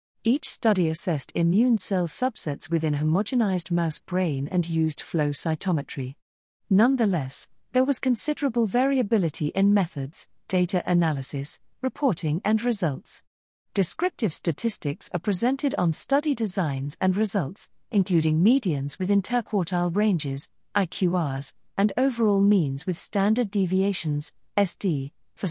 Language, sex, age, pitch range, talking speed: English, female, 40-59, 160-210 Hz, 115 wpm